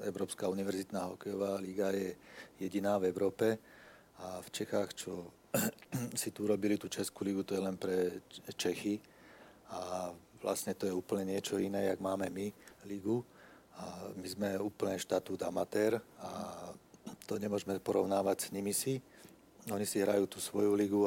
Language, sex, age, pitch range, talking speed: Czech, male, 40-59, 95-100 Hz, 150 wpm